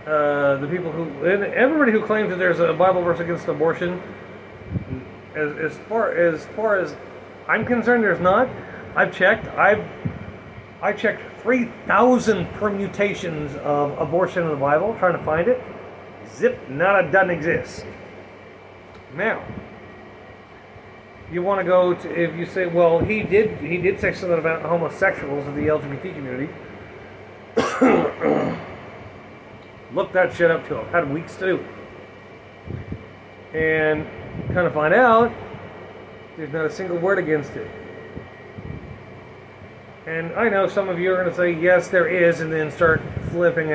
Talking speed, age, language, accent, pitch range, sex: 150 wpm, 30-49, English, American, 155-205 Hz, male